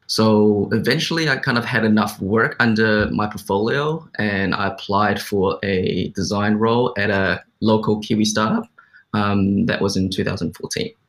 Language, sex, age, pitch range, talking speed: English, male, 20-39, 100-110 Hz, 150 wpm